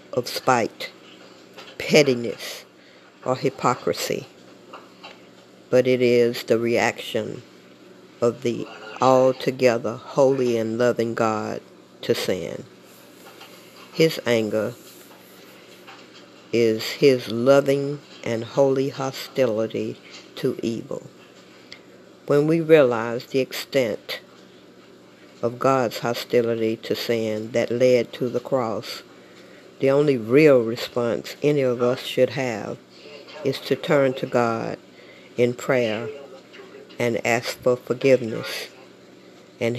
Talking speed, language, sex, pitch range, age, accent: 100 wpm, English, female, 115-135 Hz, 50-69, American